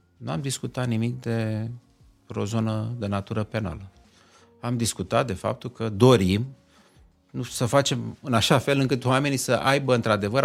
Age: 30-49